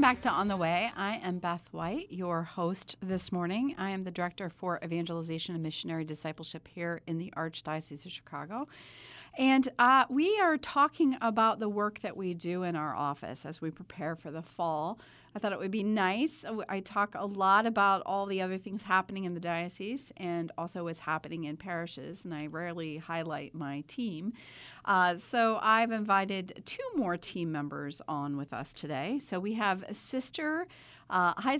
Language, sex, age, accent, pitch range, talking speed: English, female, 40-59, American, 170-225 Hz, 185 wpm